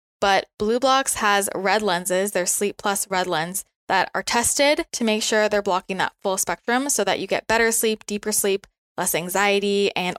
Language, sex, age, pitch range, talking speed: English, female, 20-39, 190-215 Hz, 195 wpm